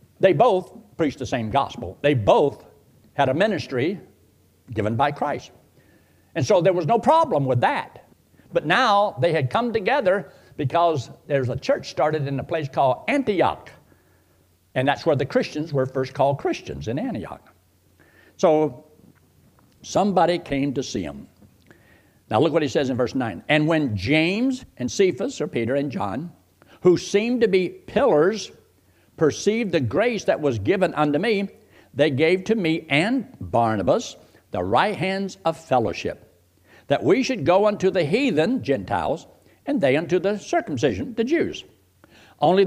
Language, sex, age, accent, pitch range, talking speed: English, male, 60-79, American, 125-200 Hz, 155 wpm